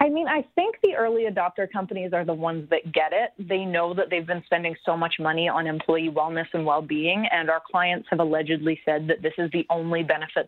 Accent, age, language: American, 20-39, English